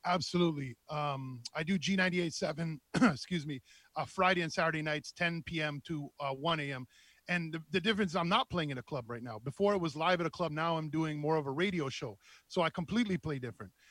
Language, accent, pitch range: English, American, 155-190 Hz